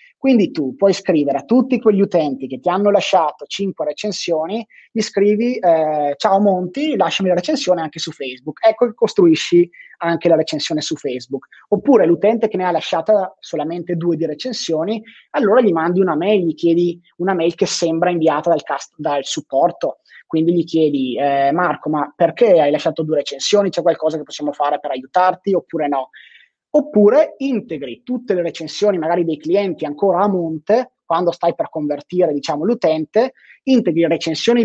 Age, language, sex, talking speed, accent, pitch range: 20-39, Italian, male, 170 wpm, native, 160-210 Hz